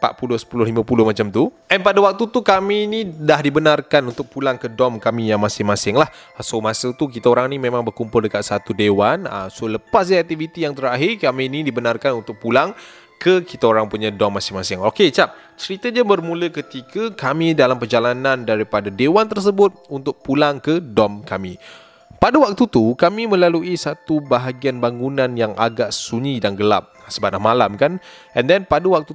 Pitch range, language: 115-175 Hz, Malay